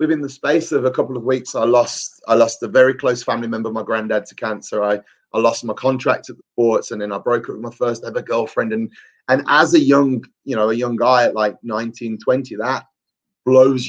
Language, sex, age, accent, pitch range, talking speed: English, male, 30-49, British, 120-145 Hz, 240 wpm